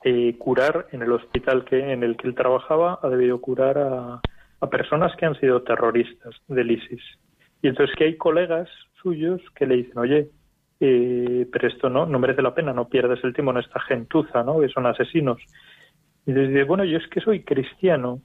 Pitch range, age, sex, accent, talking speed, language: 125-155 Hz, 30-49, male, Spanish, 195 wpm, Spanish